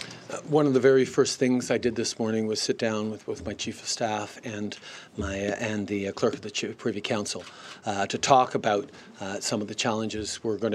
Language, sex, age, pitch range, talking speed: English, male, 40-59, 105-115 Hz, 240 wpm